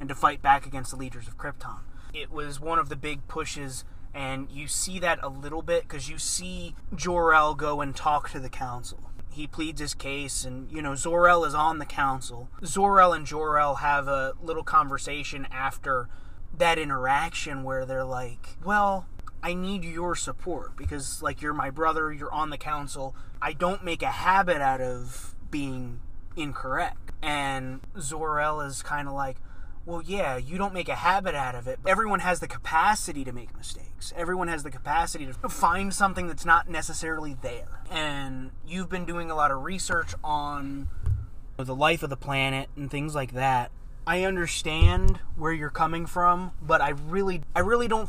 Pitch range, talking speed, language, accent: 135-170 Hz, 185 wpm, English, American